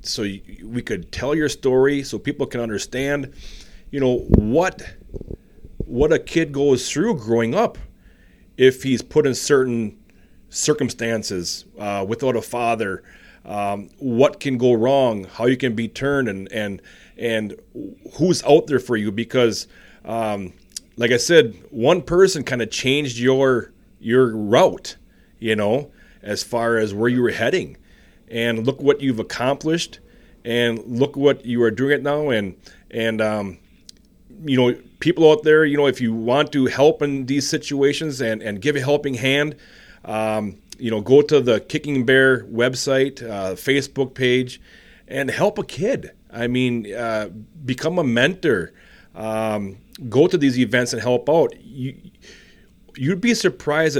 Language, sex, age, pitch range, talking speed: English, male, 30-49, 110-140 Hz, 160 wpm